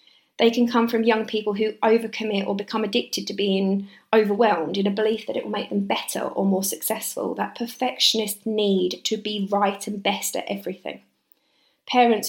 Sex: female